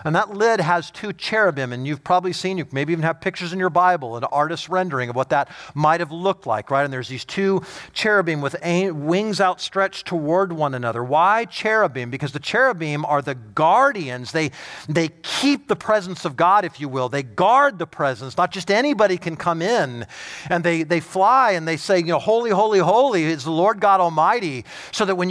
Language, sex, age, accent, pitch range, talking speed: English, male, 40-59, American, 165-220 Hz, 210 wpm